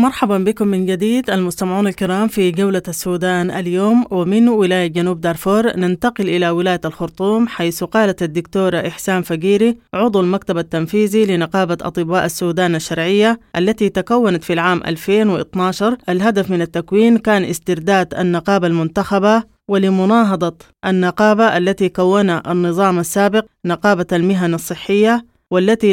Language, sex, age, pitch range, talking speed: English, female, 20-39, 175-210 Hz, 120 wpm